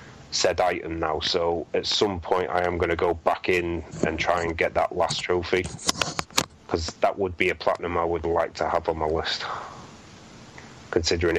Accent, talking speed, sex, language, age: British, 190 wpm, male, English, 30-49